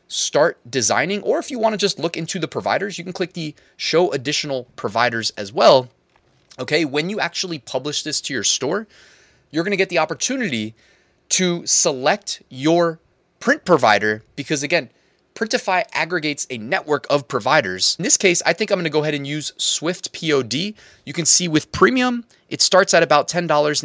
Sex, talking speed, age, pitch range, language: male, 185 wpm, 20-39, 135-180 Hz, English